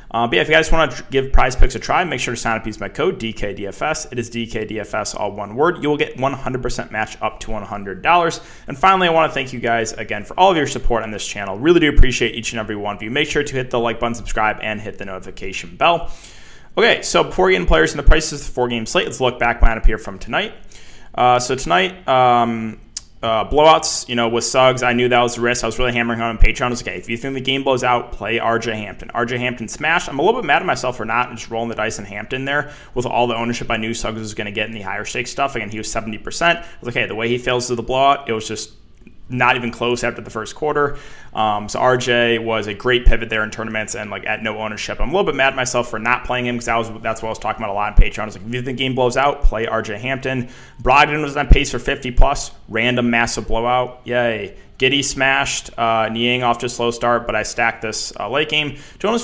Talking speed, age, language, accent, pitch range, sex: 270 wpm, 20-39, English, American, 110-130 Hz, male